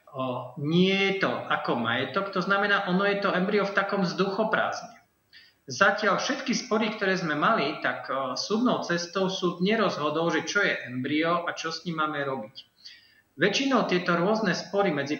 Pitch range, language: 140-185 Hz, Slovak